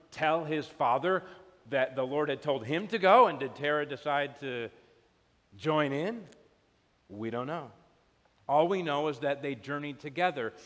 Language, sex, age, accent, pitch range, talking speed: English, male, 40-59, American, 125-160 Hz, 165 wpm